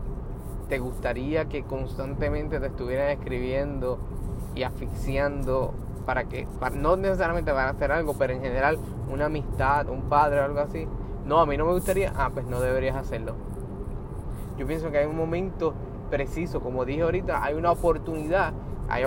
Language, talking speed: Spanish, 165 wpm